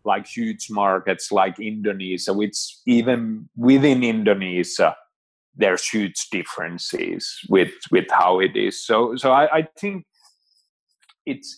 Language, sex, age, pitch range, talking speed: English, male, 30-49, 100-120 Hz, 120 wpm